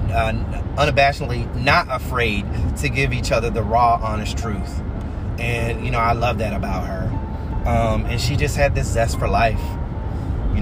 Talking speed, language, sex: 170 wpm, English, male